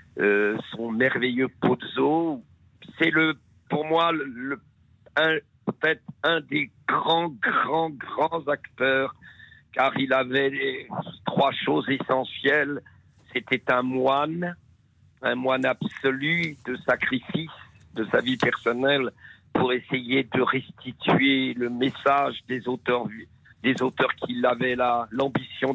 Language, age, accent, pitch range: French, 50-69, French, 120-145 Hz